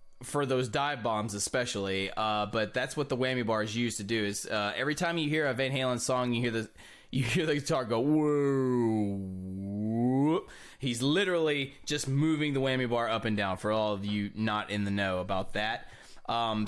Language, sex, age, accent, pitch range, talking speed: English, male, 20-39, American, 110-145 Hz, 200 wpm